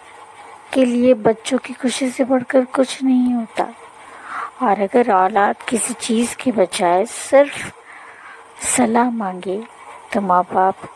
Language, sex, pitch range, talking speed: English, female, 200-255 Hz, 120 wpm